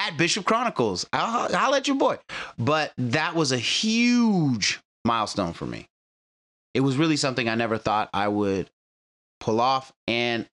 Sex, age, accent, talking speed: male, 30-49, American, 155 wpm